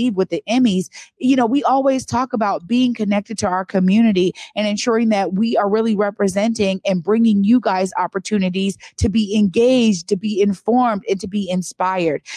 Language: English